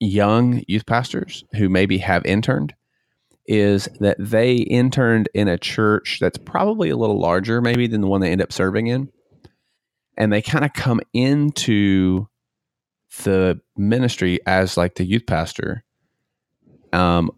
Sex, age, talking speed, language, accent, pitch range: male, 30-49, 145 wpm, English, American, 90-110 Hz